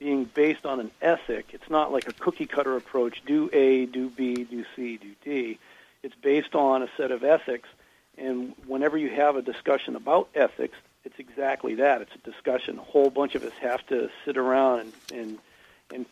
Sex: male